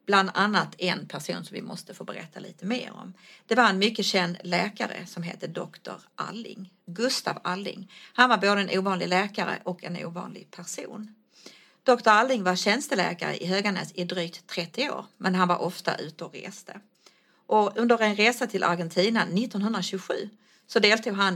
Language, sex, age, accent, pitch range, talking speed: English, female, 40-59, Swedish, 180-215 Hz, 165 wpm